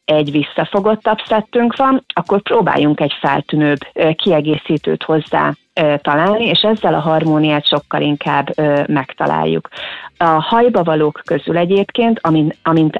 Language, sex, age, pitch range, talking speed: Hungarian, female, 30-49, 150-175 Hz, 115 wpm